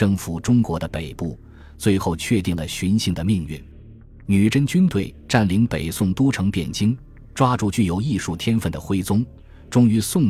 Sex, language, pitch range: male, Chinese, 85-115 Hz